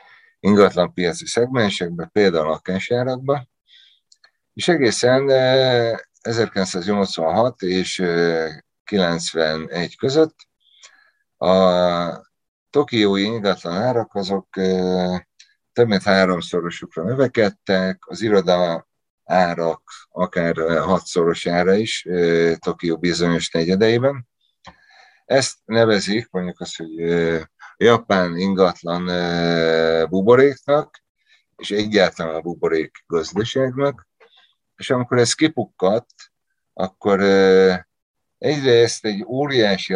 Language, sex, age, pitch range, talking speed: Hungarian, male, 50-69, 85-110 Hz, 75 wpm